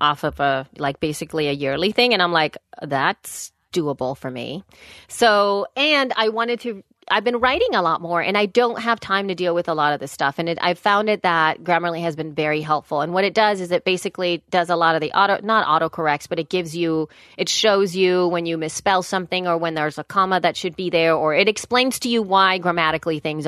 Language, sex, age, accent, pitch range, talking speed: English, female, 30-49, American, 160-200 Hz, 240 wpm